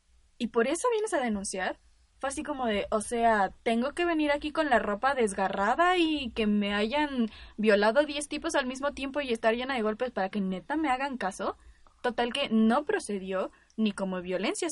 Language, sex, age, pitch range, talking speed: Spanish, female, 10-29, 195-255 Hz, 195 wpm